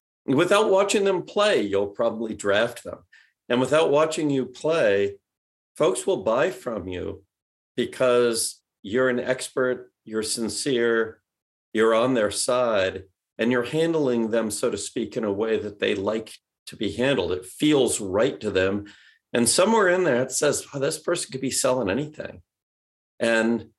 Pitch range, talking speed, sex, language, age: 105-155 Hz, 160 wpm, male, English, 50-69